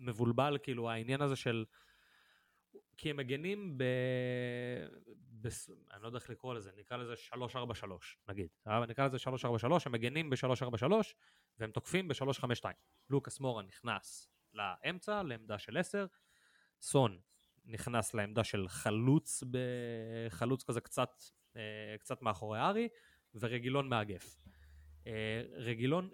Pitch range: 115-140 Hz